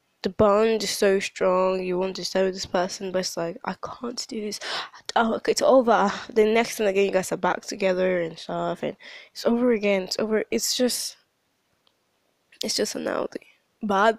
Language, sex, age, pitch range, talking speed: English, female, 10-29, 190-255 Hz, 200 wpm